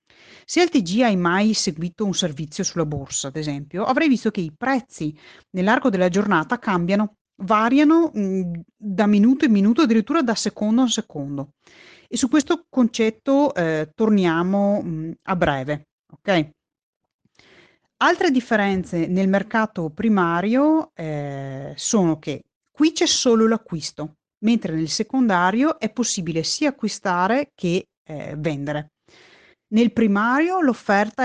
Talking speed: 125 wpm